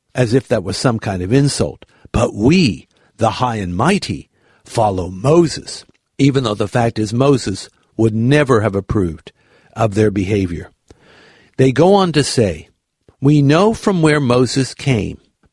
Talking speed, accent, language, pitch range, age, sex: 155 wpm, American, English, 110-145 Hz, 60-79, male